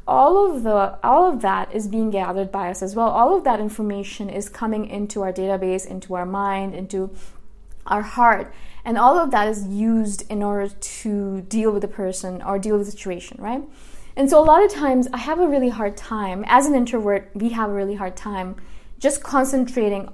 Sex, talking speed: female, 210 wpm